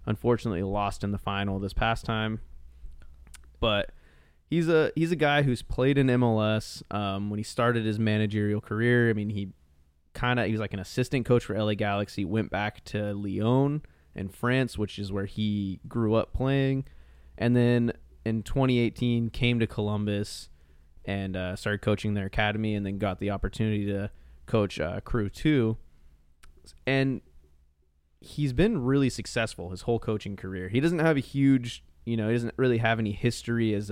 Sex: male